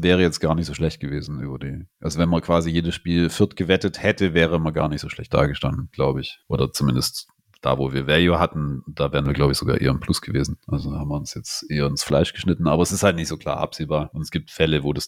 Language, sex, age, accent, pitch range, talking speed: English, male, 40-59, German, 75-90 Hz, 265 wpm